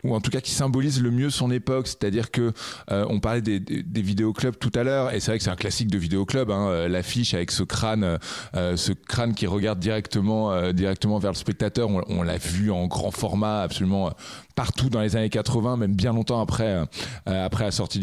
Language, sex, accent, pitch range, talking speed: French, male, French, 105-135 Hz, 230 wpm